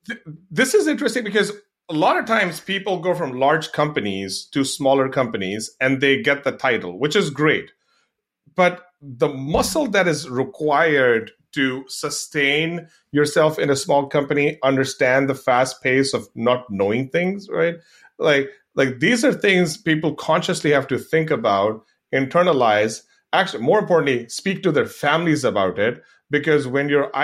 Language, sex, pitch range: English, male, 130-160 Hz